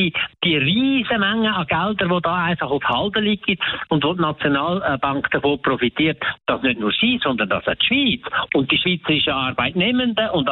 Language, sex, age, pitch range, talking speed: German, male, 60-79, 145-195 Hz, 165 wpm